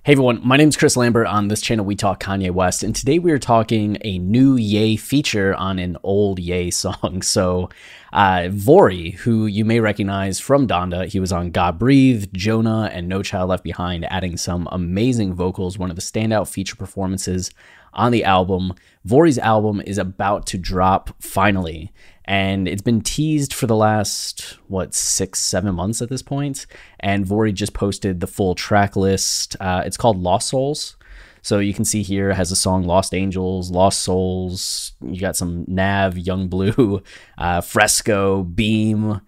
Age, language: 20-39, English